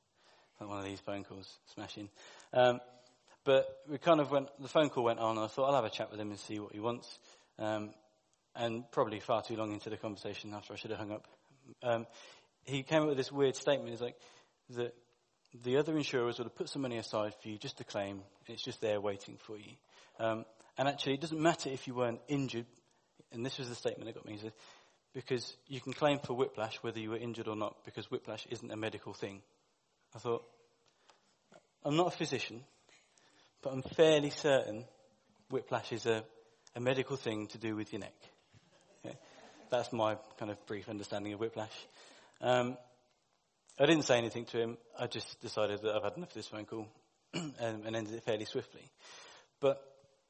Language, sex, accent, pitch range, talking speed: English, male, British, 110-135 Hz, 205 wpm